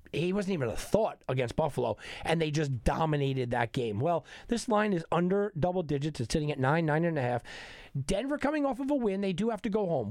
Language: English